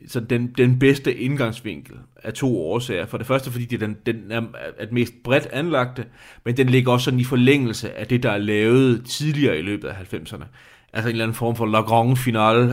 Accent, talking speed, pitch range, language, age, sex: native, 210 wpm, 110-130 Hz, Danish, 30-49, male